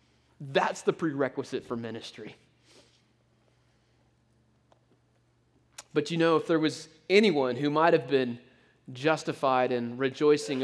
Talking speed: 105 wpm